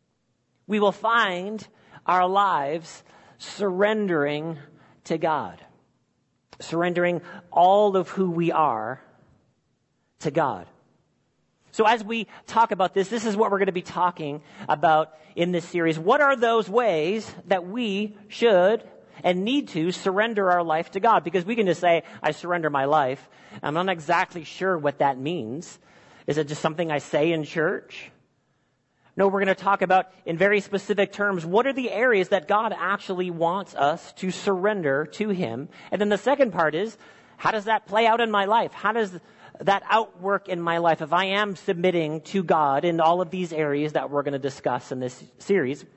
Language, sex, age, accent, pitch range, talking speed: English, male, 50-69, American, 155-200 Hz, 180 wpm